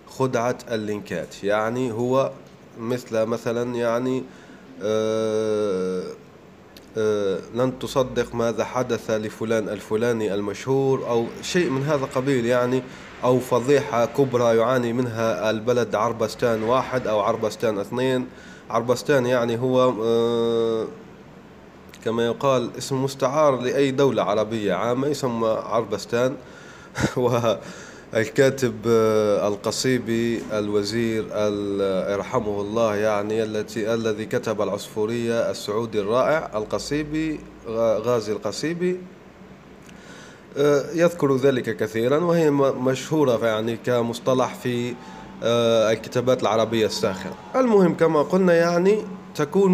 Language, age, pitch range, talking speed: Arabic, 30-49, 110-135 Hz, 95 wpm